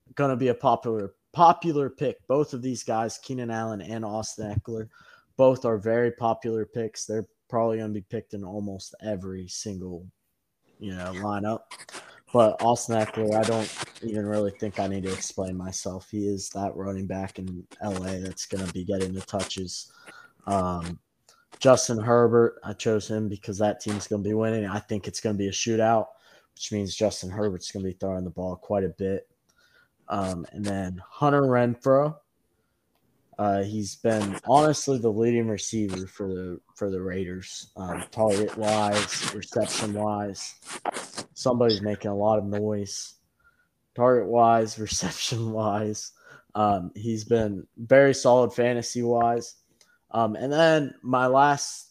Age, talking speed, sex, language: 20-39, 155 wpm, male, English